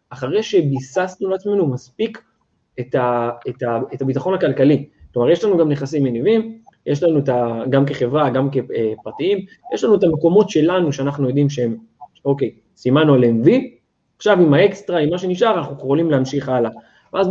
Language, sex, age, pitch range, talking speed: Hebrew, male, 20-39, 135-200 Hz, 170 wpm